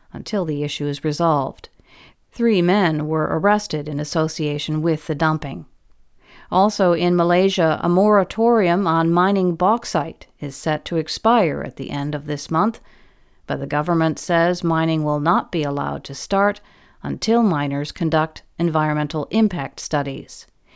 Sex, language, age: female, English, 50-69